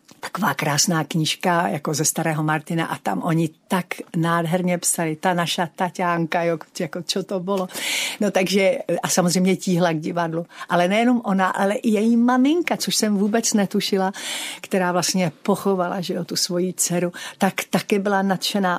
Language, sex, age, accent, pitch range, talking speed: Czech, female, 50-69, native, 160-190 Hz, 165 wpm